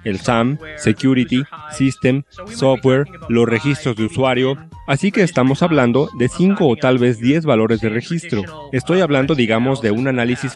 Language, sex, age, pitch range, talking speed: Spanish, male, 40-59, 115-145 Hz, 160 wpm